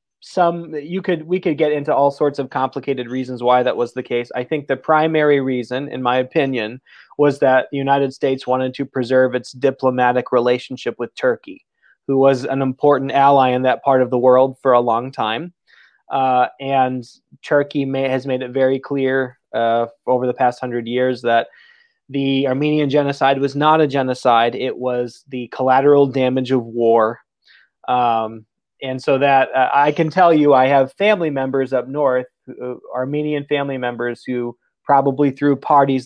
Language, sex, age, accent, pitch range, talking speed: English, male, 20-39, American, 125-145 Hz, 175 wpm